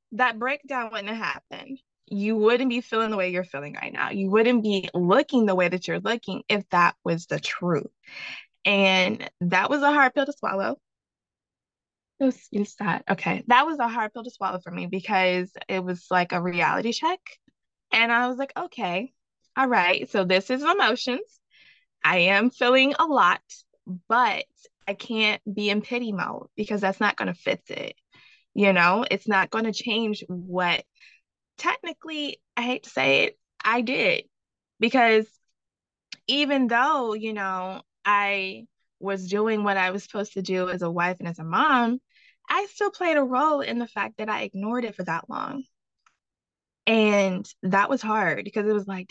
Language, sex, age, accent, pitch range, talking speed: English, female, 20-39, American, 190-255 Hz, 180 wpm